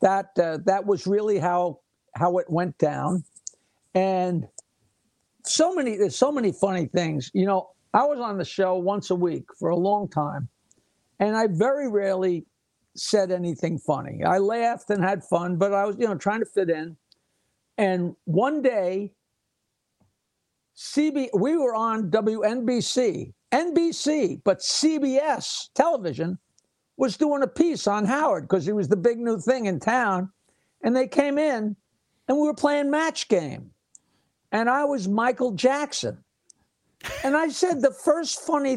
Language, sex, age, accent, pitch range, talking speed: English, male, 60-79, American, 190-270 Hz, 155 wpm